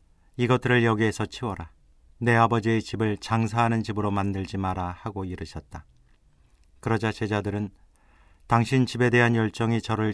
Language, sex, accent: Korean, male, native